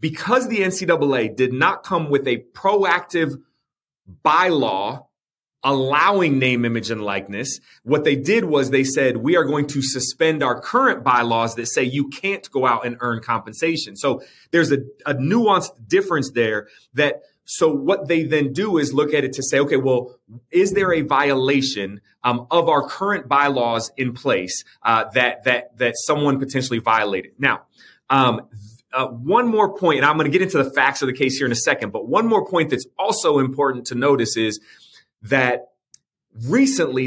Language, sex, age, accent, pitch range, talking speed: English, male, 30-49, American, 120-160 Hz, 180 wpm